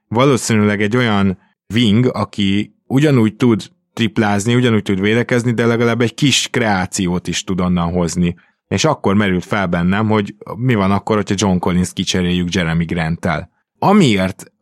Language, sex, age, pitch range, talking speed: Hungarian, male, 20-39, 95-115 Hz, 150 wpm